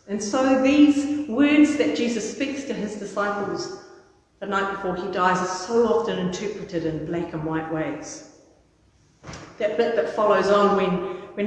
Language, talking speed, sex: English, 160 wpm, female